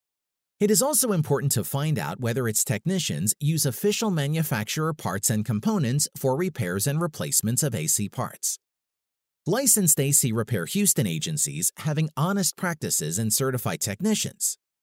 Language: English